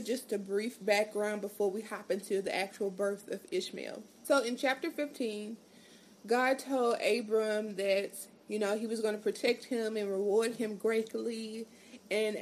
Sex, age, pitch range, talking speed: female, 20-39, 205-245 Hz, 165 wpm